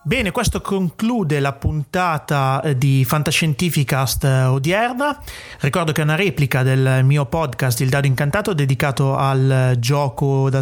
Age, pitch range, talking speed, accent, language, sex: 30-49, 135-165 Hz, 130 wpm, native, Italian, male